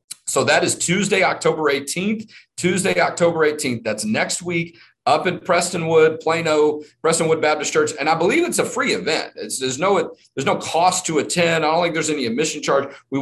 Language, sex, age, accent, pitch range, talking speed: English, male, 40-59, American, 135-170 Hz, 180 wpm